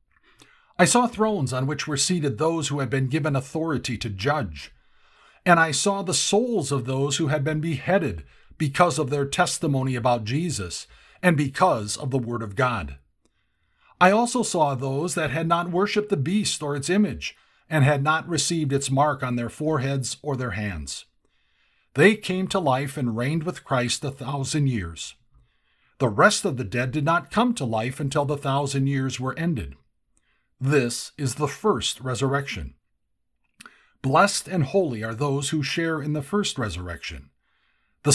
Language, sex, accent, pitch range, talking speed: English, male, American, 120-160 Hz, 170 wpm